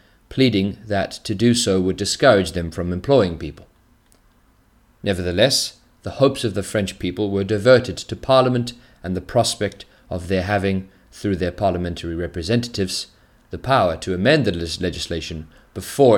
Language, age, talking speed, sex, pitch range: English, 30-49, 145 wpm, male, 95-115 Hz